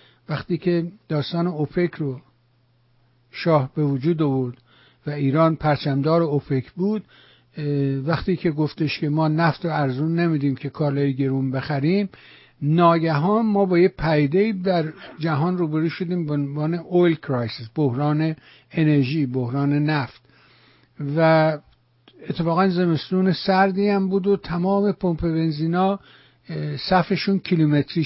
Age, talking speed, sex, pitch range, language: 60-79, 120 wpm, male, 140-175 Hz, English